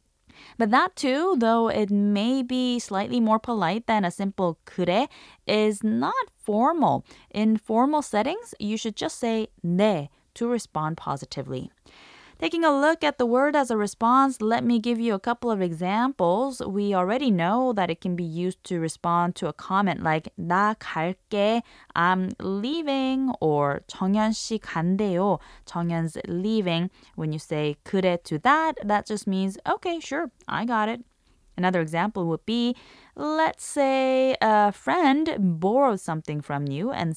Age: 20-39